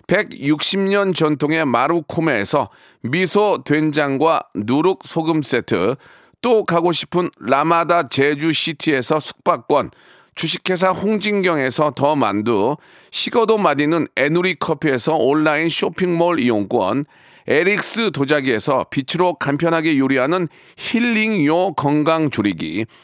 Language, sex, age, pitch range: Korean, male, 40-59, 150-200 Hz